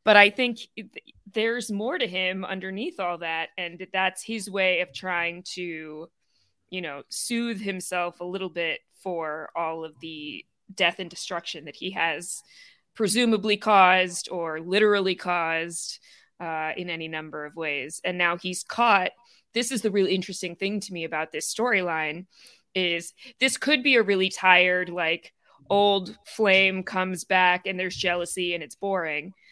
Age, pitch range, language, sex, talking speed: 20-39, 170-200 Hz, English, female, 160 wpm